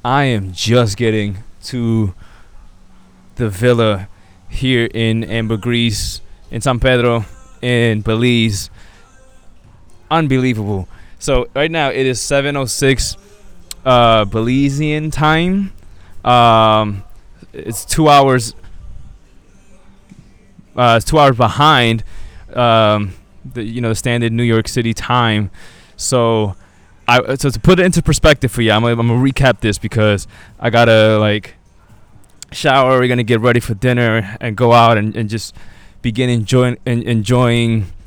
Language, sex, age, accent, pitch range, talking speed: English, male, 20-39, American, 105-135 Hz, 130 wpm